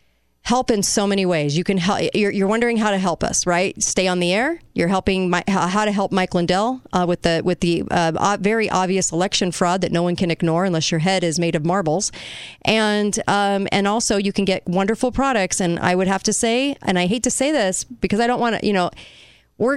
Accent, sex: American, female